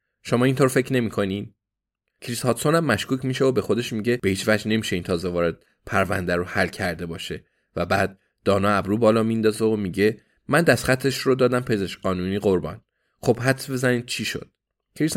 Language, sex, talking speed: Persian, male, 180 wpm